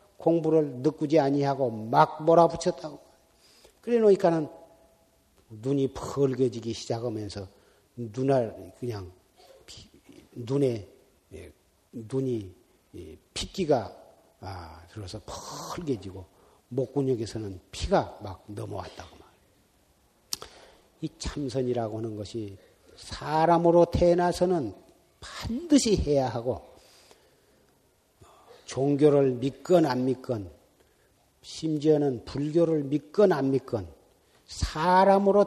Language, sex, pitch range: Korean, male, 110-170 Hz